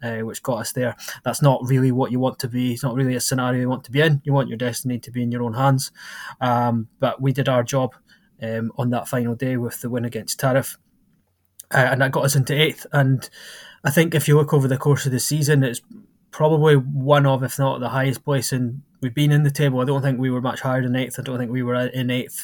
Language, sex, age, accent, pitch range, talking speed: English, male, 20-39, British, 120-135 Hz, 265 wpm